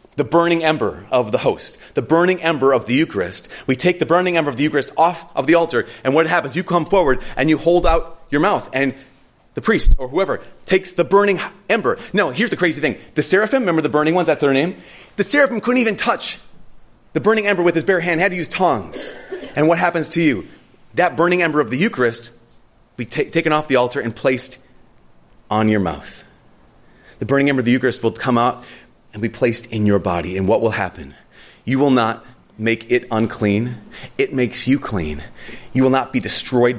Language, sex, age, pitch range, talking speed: English, male, 30-49, 115-175 Hz, 215 wpm